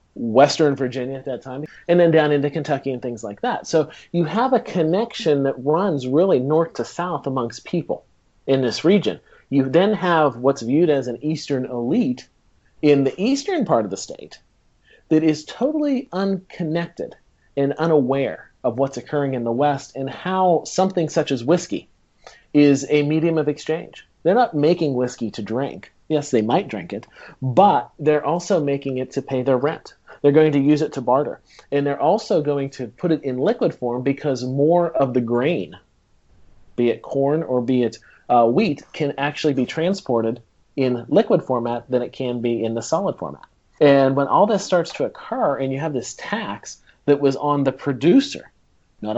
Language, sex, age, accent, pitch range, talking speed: English, male, 40-59, American, 125-160 Hz, 185 wpm